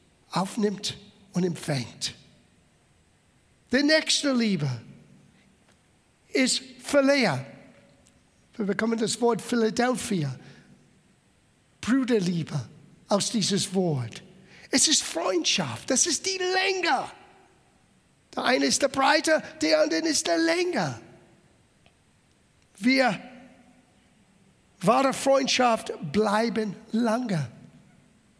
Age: 60-79